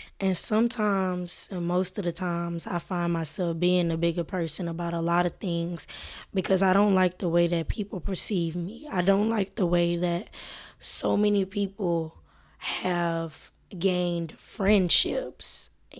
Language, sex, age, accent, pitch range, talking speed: English, female, 20-39, American, 170-200 Hz, 155 wpm